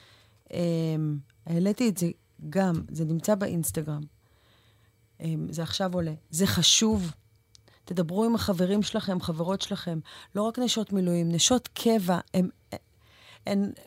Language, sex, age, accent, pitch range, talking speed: English, female, 30-49, Israeli, 125-185 Hz, 115 wpm